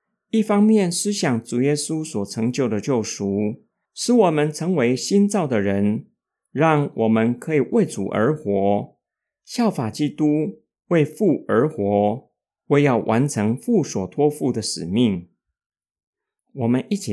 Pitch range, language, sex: 115-175 Hz, Chinese, male